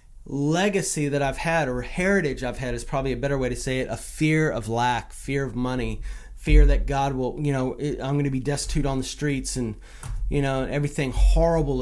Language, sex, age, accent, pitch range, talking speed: English, male, 30-49, American, 130-155 Hz, 215 wpm